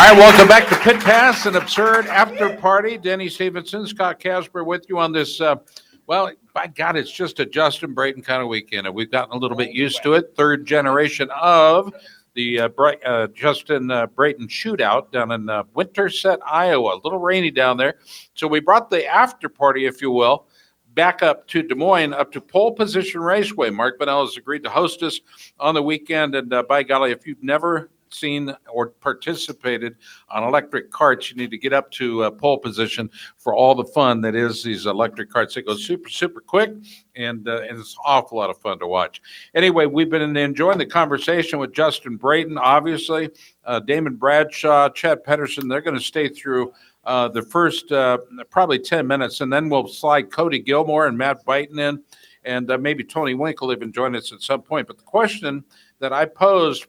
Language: English